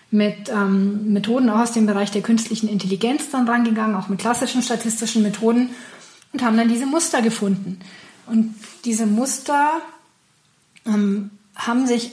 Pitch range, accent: 210-245 Hz, German